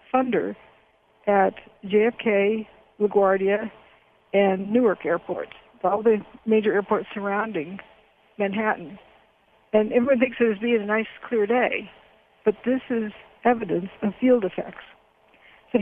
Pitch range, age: 200-240 Hz, 60-79